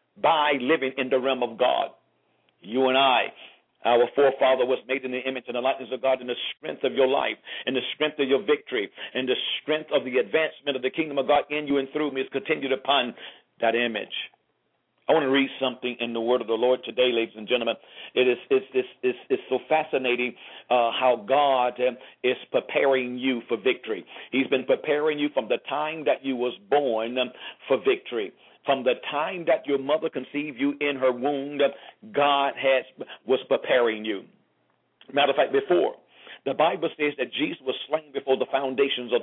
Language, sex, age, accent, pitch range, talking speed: English, male, 50-69, American, 125-155 Hz, 195 wpm